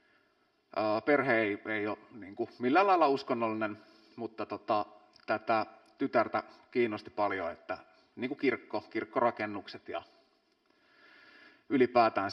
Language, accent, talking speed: Finnish, native, 95 wpm